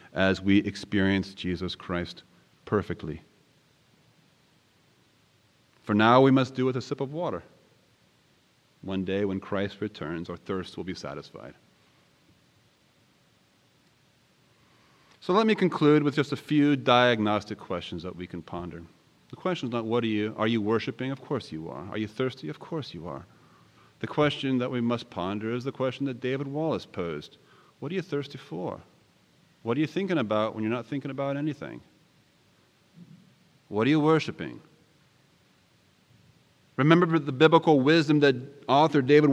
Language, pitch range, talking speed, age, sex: English, 110-155 Hz, 155 wpm, 30-49, male